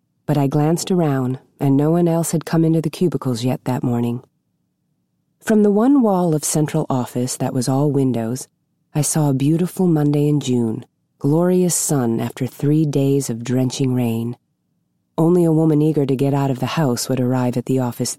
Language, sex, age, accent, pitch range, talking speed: English, female, 40-59, American, 125-160 Hz, 190 wpm